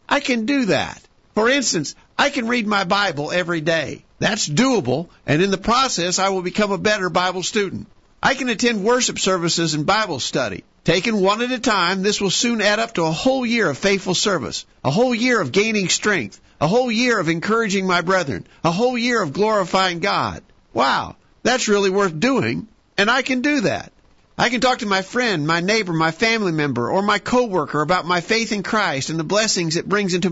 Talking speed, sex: 210 wpm, male